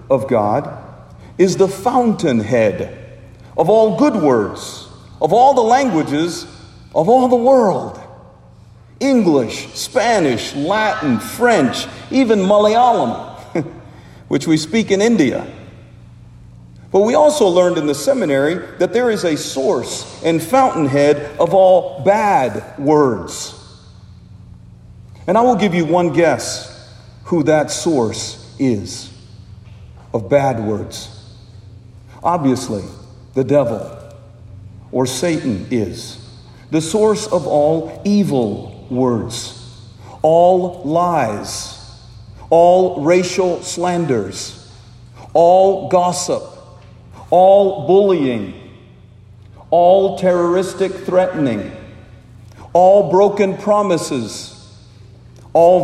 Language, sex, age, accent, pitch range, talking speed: English, male, 50-69, American, 115-180 Hz, 95 wpm